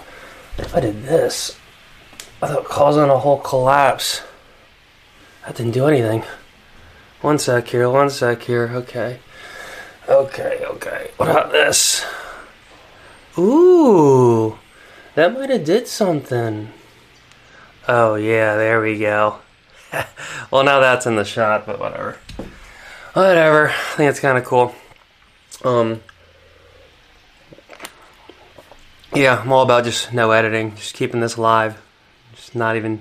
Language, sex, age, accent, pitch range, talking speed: English, male, 20-39, American, 115-135 Hz, 120 wpm